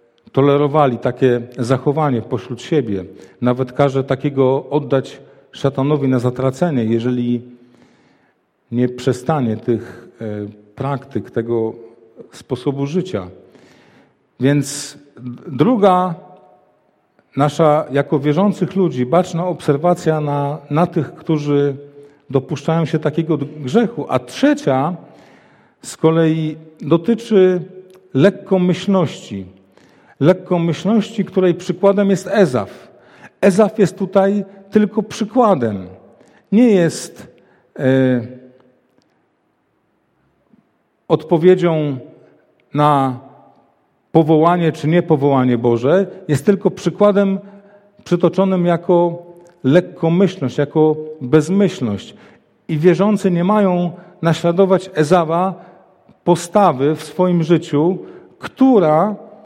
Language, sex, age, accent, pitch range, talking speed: Polish, male, 40-59, native, 130-185 Hz, 80 wpm